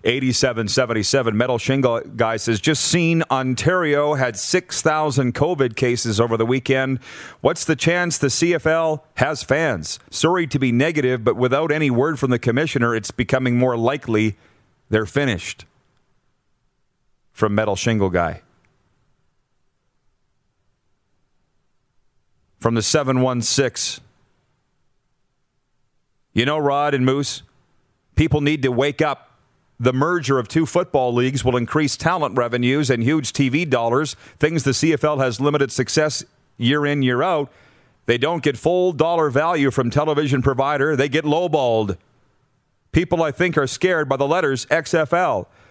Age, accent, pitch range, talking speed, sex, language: 40-59, American, 115-150 Hz, 135 wpm, male, English